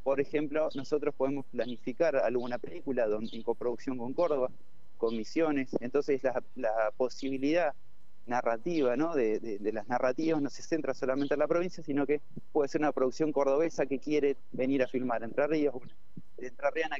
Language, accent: Spanish, Argentinian